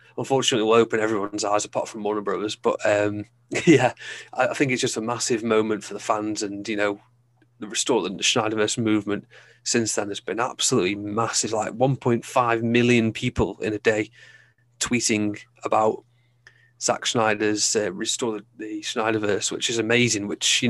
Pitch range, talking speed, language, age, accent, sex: 105-120 Hz, 165 wpm, English, 30-49, British, male